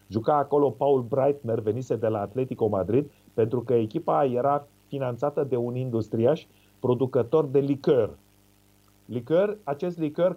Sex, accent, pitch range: male, native, 115-160 Hz